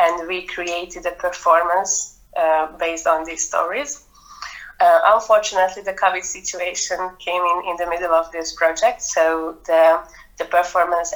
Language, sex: English, female